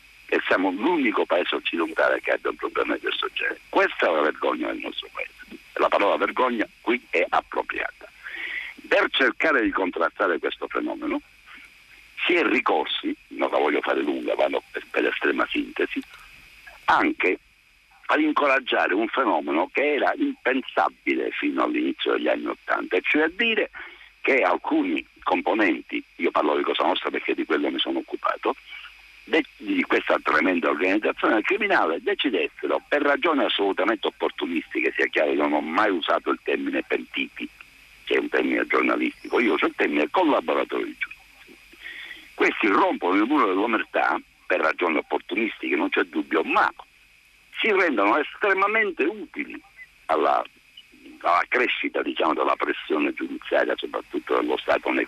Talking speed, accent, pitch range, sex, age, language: 145 wpm, native, 310-410 Hz, male, 60-79, Italian